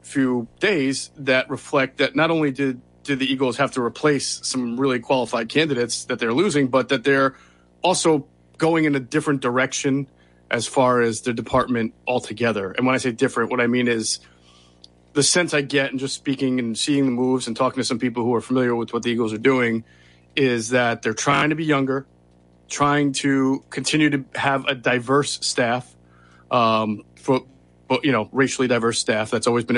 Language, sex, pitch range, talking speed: English, male, 115-145 Hz, 195 wpm